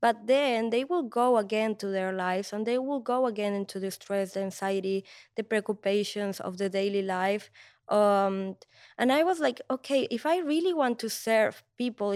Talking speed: 190 wpm